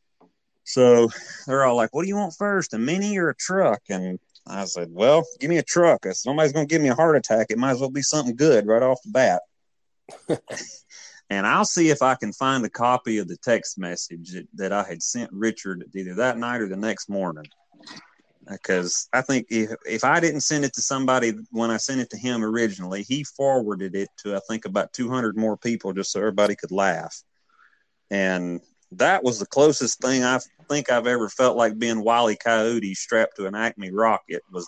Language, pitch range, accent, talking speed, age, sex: English, 105-130 Hz, American, 210 wpm, 30-49, male